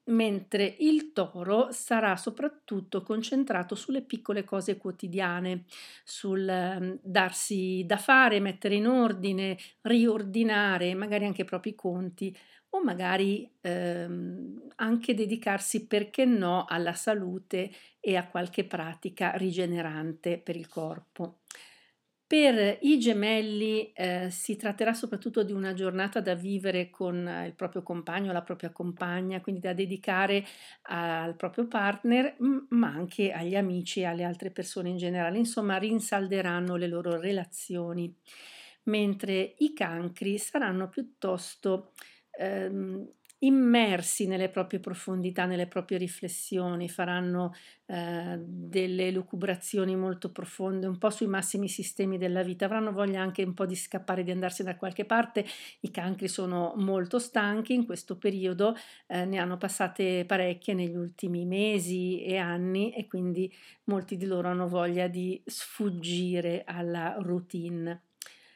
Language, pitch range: Italian, 180-210 Hz